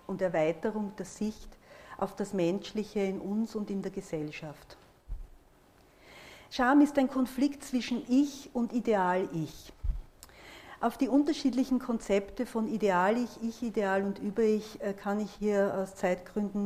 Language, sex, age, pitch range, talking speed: German, female, 50-69, 185-235 Hz, 125 wpm